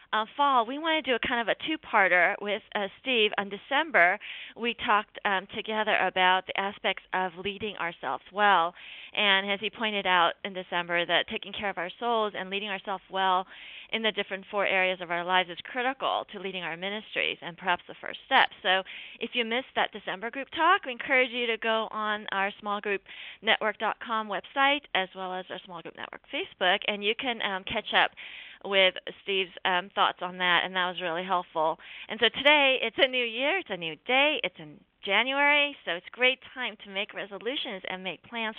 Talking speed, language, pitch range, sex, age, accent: 200 wpm, English, 190-245 Hz, female, 30-49, American